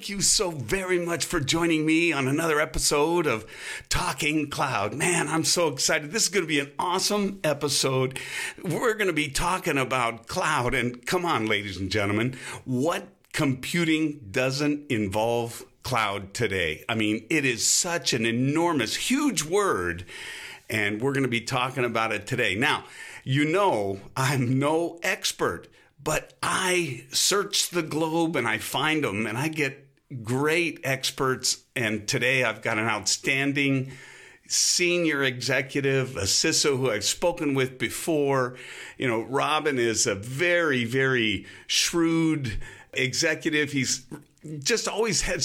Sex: male